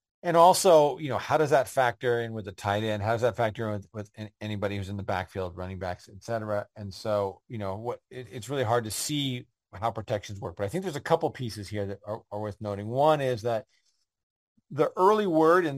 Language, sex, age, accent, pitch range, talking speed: English, male, 40-59, American, 105-135 Hz, 235 wpm